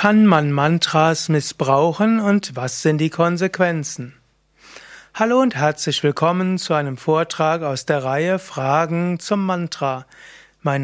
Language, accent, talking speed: German, German, 125 wpm